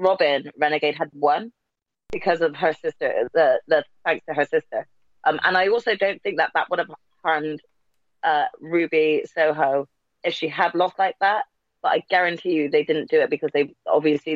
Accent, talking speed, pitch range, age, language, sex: British, 190 wpm, 155-205 Hz, 20-39, English, female